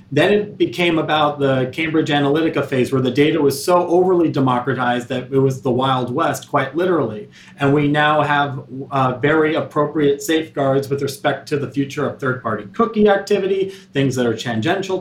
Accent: American